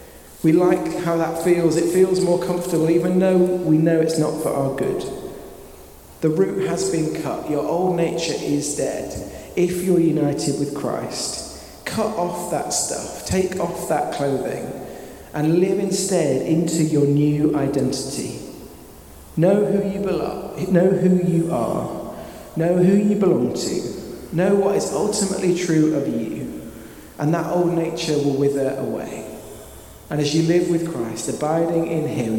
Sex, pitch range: male, 150-185 Hz